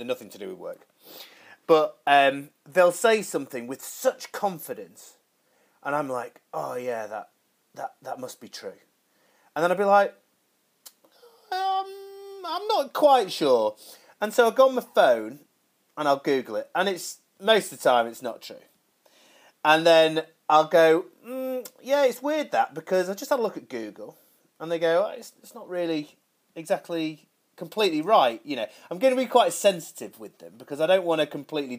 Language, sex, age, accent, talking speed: English, male, 30-49, British, 185 wpm